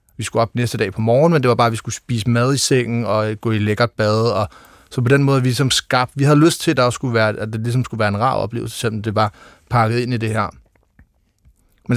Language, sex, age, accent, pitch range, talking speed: Danish, male, 30-49, native, 95-120 Hz, 285 wpm